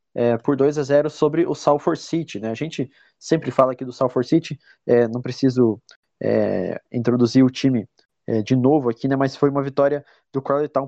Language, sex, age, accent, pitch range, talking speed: Portuguese, male, 20-39, Brazilian, 120-145 Hz, 205 wpm